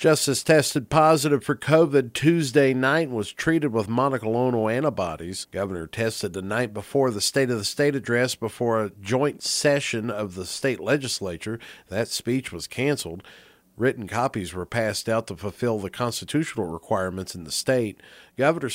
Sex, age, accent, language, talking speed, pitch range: male, 50-69, American, English, 160 wpm, 105-145 Hz